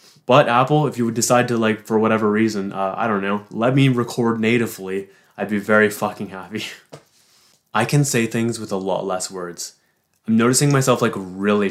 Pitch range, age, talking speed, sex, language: 95-115 Hz, 20-39, 195 wpm, male, English